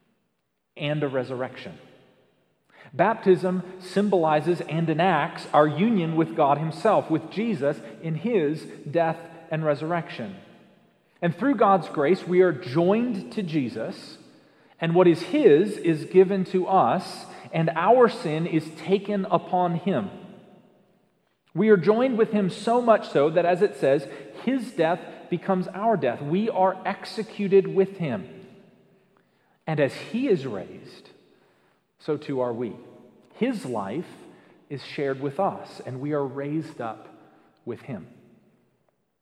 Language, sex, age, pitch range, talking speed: English, male, 40-59, 145-195 Hz, 135 wpm